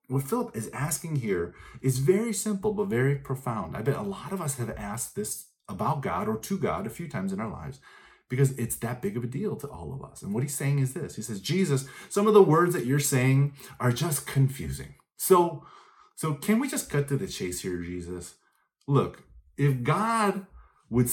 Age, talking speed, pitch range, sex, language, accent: 30-49, 215 wpm, 140-205 Hz, male, English, American